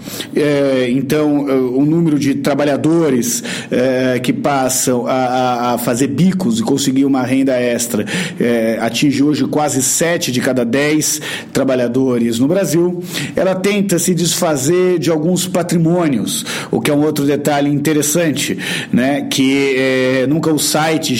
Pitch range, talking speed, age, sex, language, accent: 135-175 Hz, 125 wpm, 50-69, male, Portuguese, Brazilian